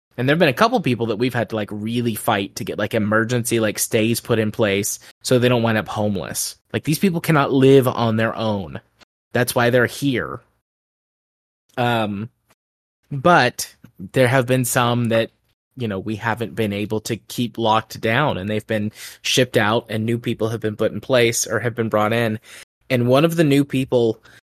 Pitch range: 110-140 Hz